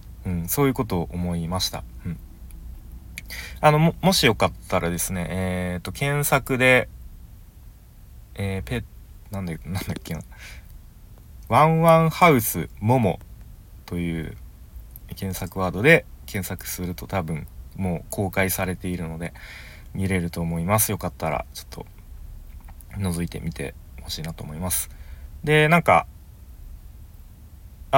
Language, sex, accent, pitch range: Japanese, male, native, 85-120 Hz